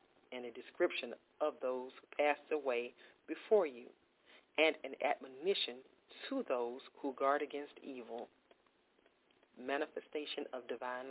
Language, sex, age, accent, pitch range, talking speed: English, female, 40-59, American, 130-175 Hz, 120 wpm